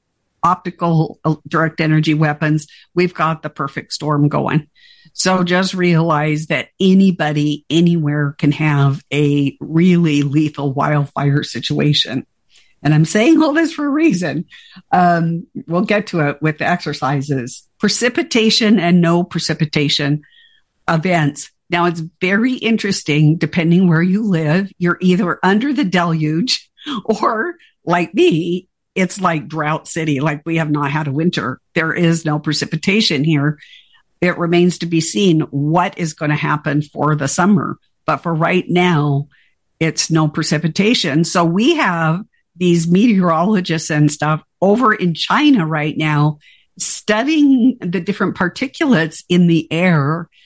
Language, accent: English, American